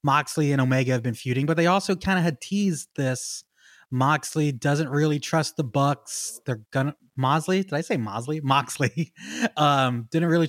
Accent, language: American, English